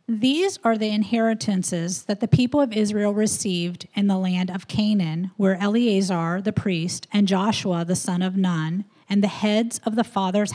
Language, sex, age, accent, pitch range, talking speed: English, female, 40-59, American, 175-215 Hz, 175 wpm